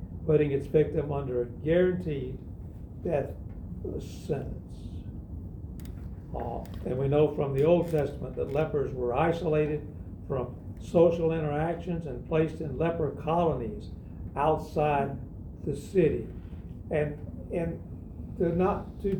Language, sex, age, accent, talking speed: English, male, 60-79, American, 115 wpm